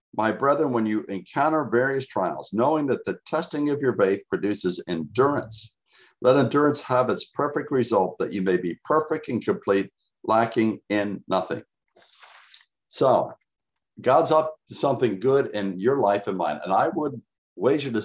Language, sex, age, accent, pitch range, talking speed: English, male, 60-79, American, 100-130 Hz, 160 wpm